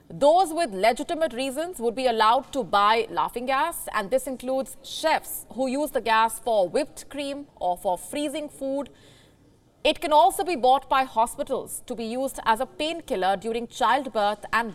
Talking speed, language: 170 wpm, English